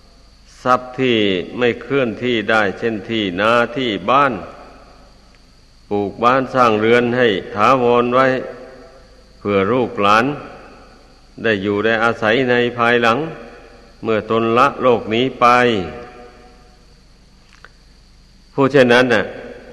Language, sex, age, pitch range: Thai, male, 60-79, 110-120 Hz